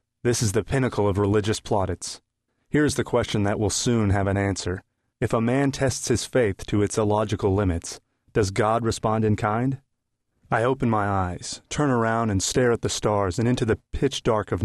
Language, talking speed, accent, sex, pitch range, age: English, 200 wpm, American, male, 105-120 Hz, 30-49